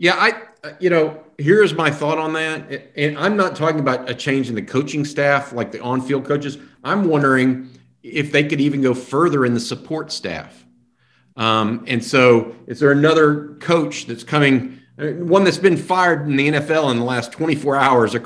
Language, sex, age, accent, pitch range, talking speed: English, male, 50-69, American, 110-140 Hz, 190 wpm